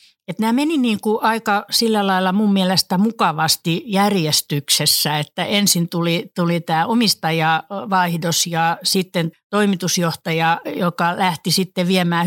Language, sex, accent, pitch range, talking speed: Finnish, female, native, 165-205 Hz, 115 wpm